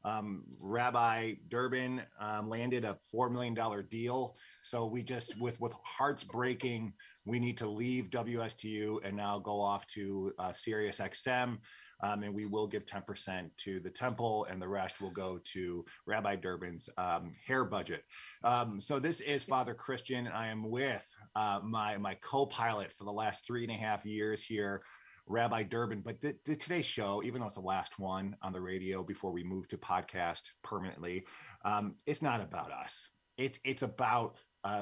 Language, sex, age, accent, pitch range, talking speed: English, male, 30-49, American, 100-125 Hz, 180 wpm